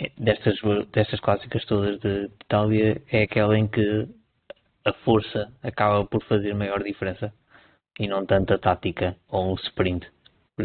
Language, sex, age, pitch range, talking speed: Portuguese, male, 20-39, 95-110 Hz, 145 wpm